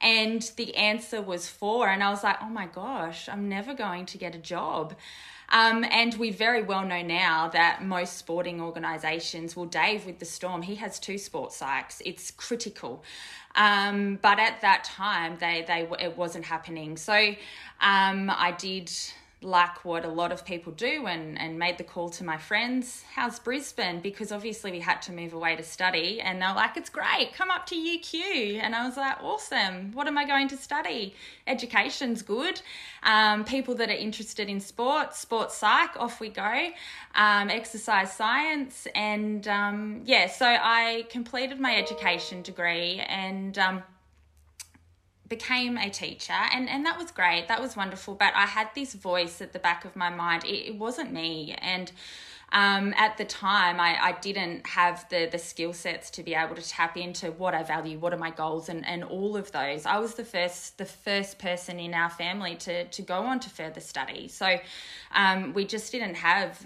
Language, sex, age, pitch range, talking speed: English, female, 20-39, 175-225 Hz, 190 wpm